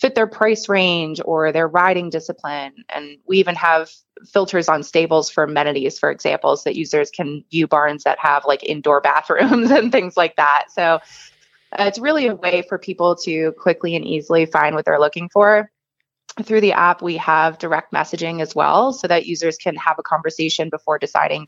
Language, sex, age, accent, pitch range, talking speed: English, female, 20-39, American, 155-185 Hz, 195 wpm